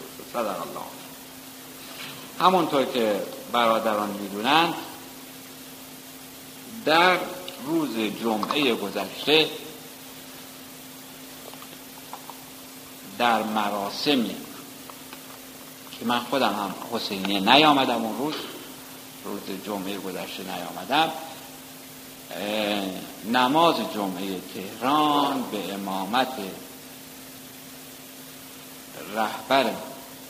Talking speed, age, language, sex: 55 wpm, 60-79, Persian, male